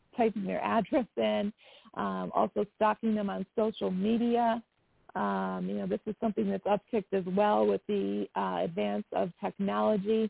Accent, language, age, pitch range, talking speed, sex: American, English, 40-59, 190-220 Hz, 155 wpm, female